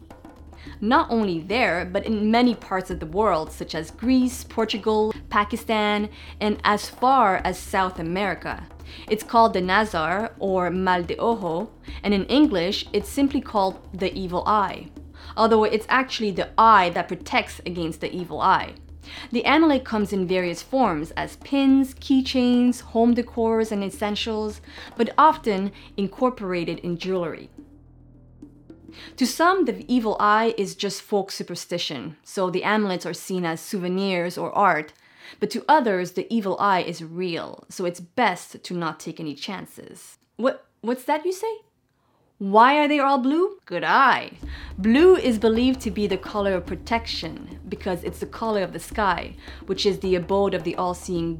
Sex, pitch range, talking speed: female, 180-230 Hz, 160 wpm